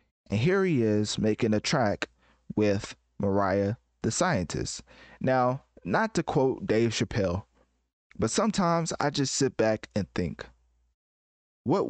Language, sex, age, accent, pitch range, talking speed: English, male, 20-39, American, 100-125 Hz, 130 wpm